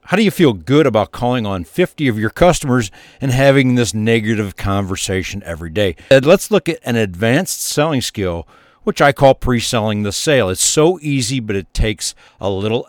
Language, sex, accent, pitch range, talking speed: English, male, American, 100-140 Hz, 185 wpm